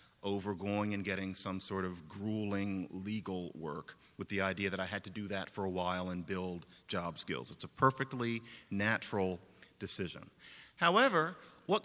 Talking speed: 160 wpm